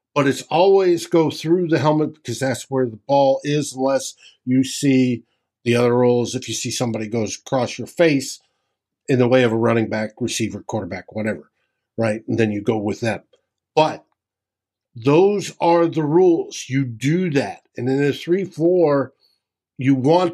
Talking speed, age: 170 wpm, 50-69